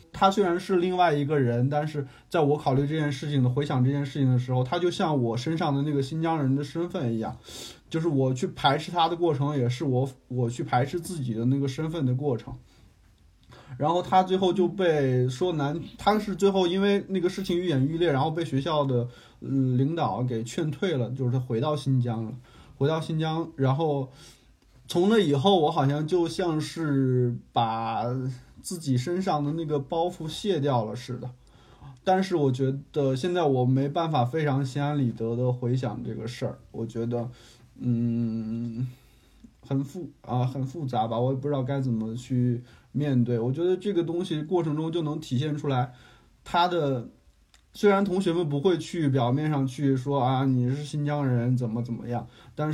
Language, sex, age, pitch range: Chinese, male, 20-39, 125-165 Hz